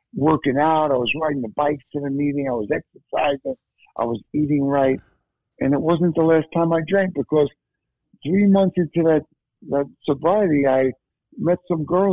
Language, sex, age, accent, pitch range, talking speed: English, male, 60-79, American, 130-160 Hz, 180 wpm